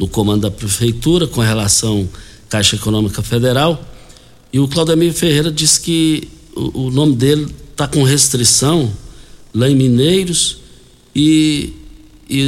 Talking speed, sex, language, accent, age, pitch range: 125 wpm, male, Portuguese, Brazilian, 60-79, 120-160 Hz